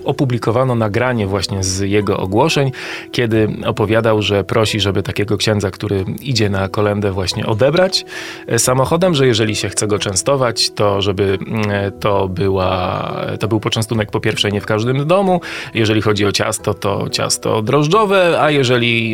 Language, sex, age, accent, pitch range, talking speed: Polish, male, 30-49, native, 105-130 Hz, 150 wpm